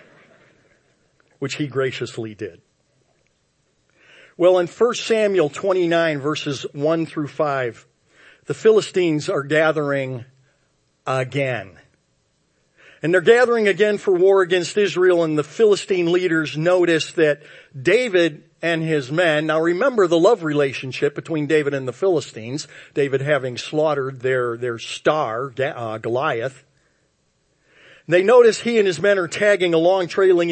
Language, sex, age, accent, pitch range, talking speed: English, male, 50-69, American, 140-180 Hz, 125 wpm